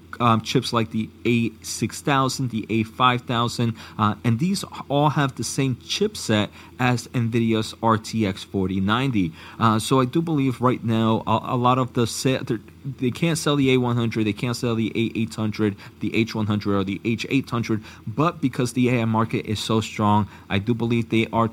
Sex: male